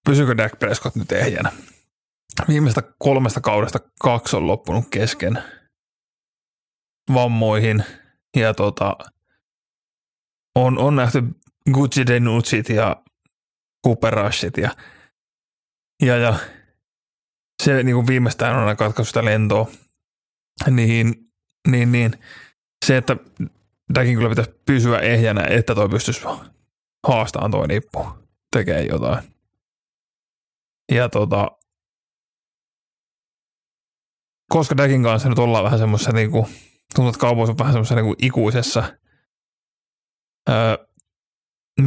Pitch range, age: 110-130 Hz, 20-39